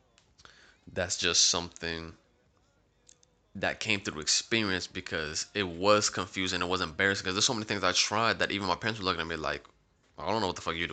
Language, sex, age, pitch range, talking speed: English, male, 20-39, 90-105 Hz, 210 wpm